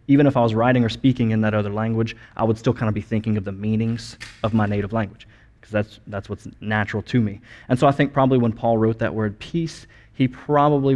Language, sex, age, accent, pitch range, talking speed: English, male, 20-39, American, 105-125 Hz, 245 wpm